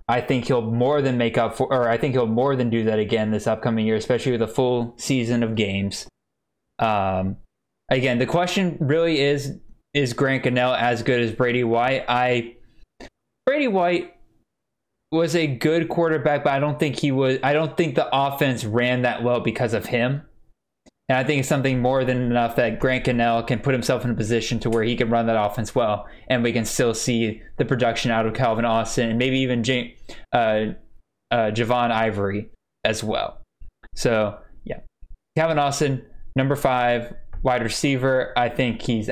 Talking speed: 185 wpm